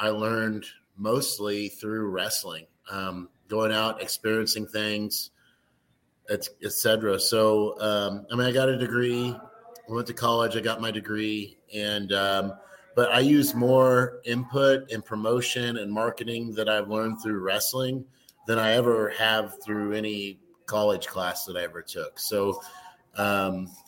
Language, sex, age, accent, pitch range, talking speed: English, male, 30-49, American, 105-125 Hz, 145 wpm